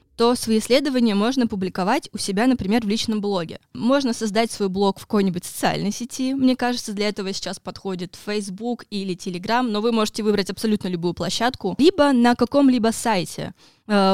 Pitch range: 195-240 Hz